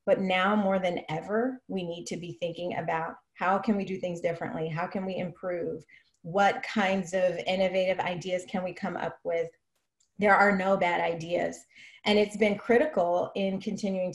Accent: American